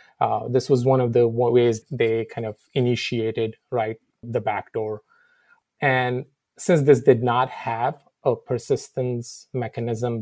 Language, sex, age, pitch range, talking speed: English, male, 30-49, 115-130 Hz, 135 wpm